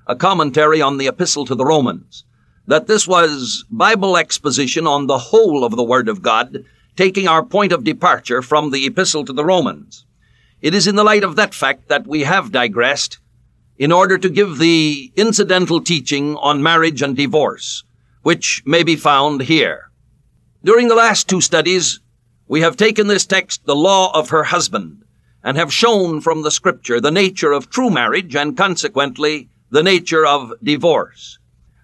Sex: male